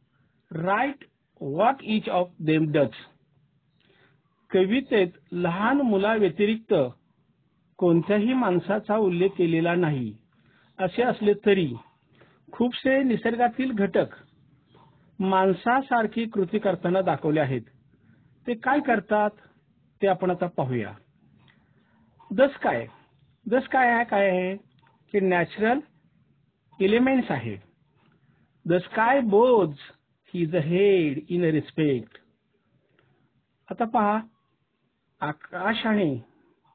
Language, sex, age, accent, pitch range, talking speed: Marathi, male, 50-69, native, 155-215 Hz, 60 wpm